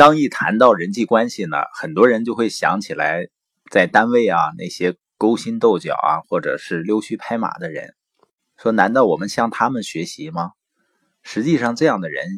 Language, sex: Chinese, male